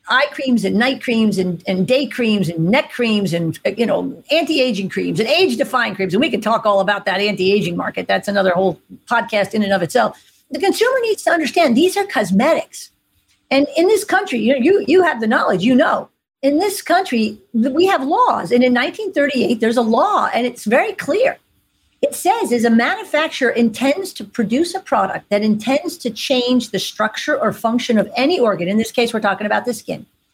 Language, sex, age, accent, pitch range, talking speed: English, female, 50-69, American, 210-295 Hz, 205 wpm